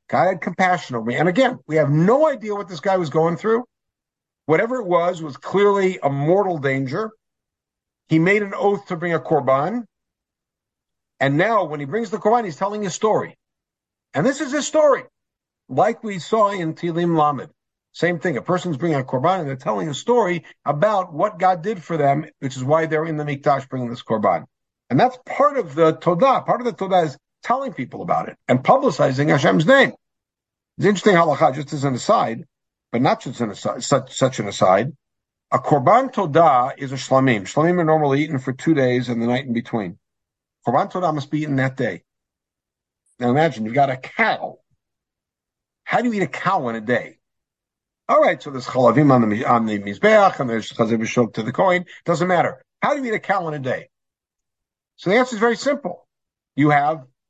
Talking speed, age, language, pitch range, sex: 200 wpm, 50-69, English, 135-200 Hz, male